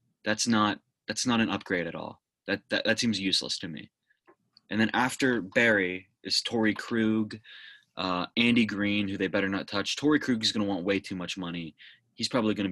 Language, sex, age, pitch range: English, male, 20-39, 95-115 Hz